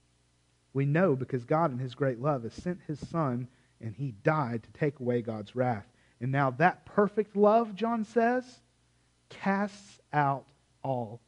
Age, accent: 40-59, American